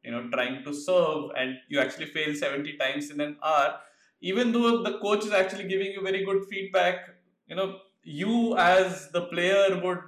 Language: English